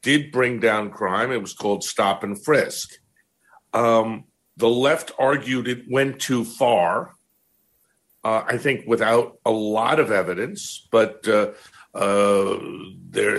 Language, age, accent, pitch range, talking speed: English, 50-69, American, 115-140 Hz, 135 wpm